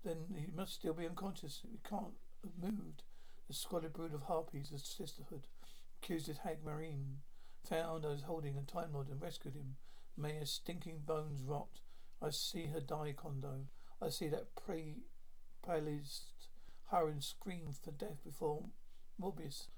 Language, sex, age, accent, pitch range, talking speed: English, male, 60-79, British, 145-170 Hz, 160 wpm